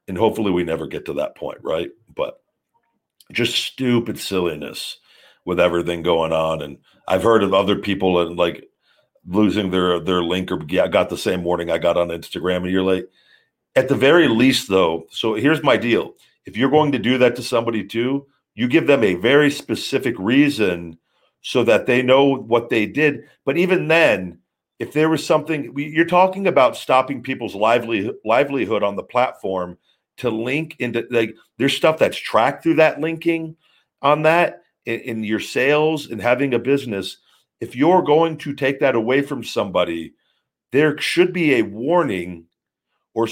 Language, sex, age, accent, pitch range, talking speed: English, male, 50-69, American, 95-145 Hz, 175 wpm